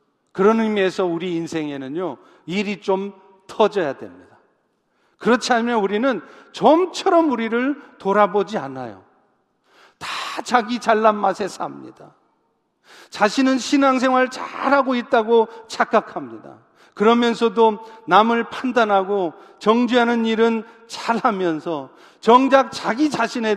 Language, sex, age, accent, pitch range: Korean, male, 40-59, native, 195-240 Hz